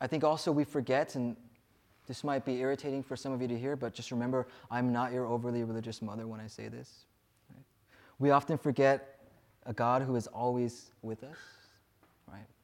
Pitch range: 115-150 Hz